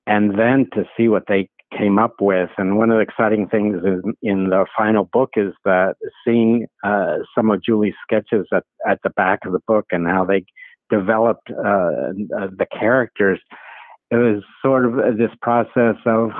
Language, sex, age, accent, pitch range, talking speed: English, male, 60-79, American, 100-125 Hz, 175 wpm